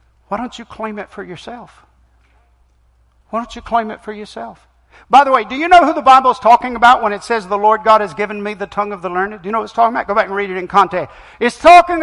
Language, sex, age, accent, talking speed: English, male, 60-79, American, 280 wpm